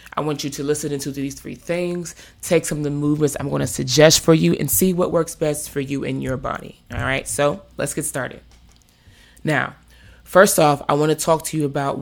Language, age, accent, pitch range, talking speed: English, 20-39, American, 130-155 Hz, 230 wpm